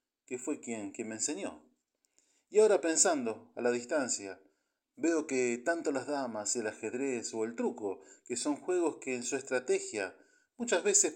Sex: male